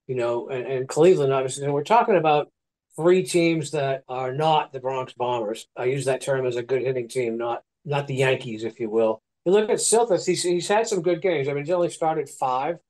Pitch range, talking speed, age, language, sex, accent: 135-170 Hz, 230 wpm, 50-69, English, male, American